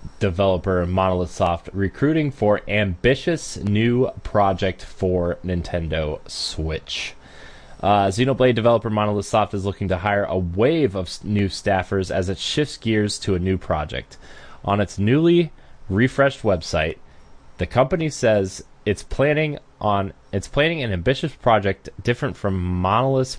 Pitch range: 90-115 Hz